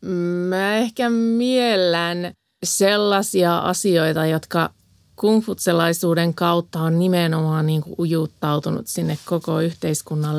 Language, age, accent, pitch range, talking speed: Finnish, 30-49, native, 160-195 Hz, 85 wpm